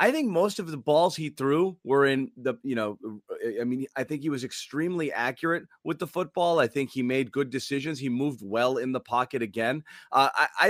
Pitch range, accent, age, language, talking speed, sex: 115-150 Hz, American, 30-49, English, 220 wpm, male